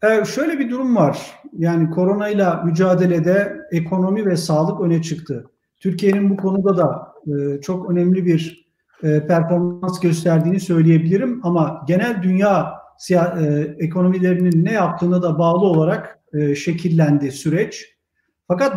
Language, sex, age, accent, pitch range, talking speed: Turkish, male, 50-69, native, 170-210 Hz, 110 wpm